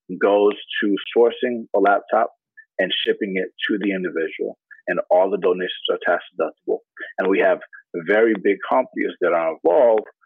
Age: 40-59